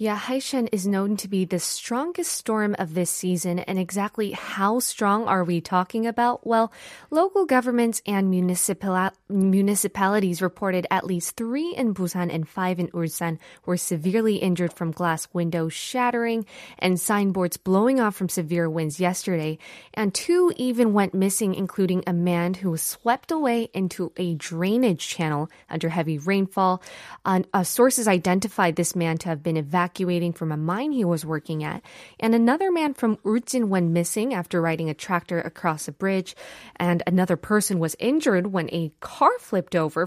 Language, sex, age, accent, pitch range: Korean, female, 20-39, American, 175-230 Hz